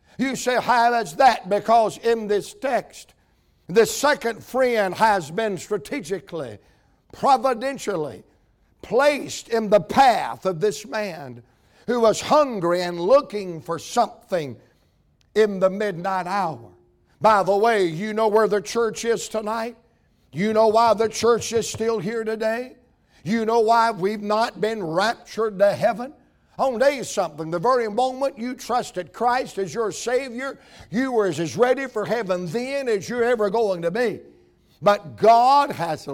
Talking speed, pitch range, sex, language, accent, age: 150 wpm, 195-245 Hz, male, English, American, 60-79